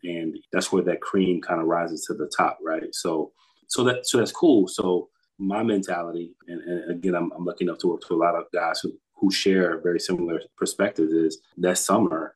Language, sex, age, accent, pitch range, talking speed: English, male, 30-49, American, 85-95 Hz, 215 wpm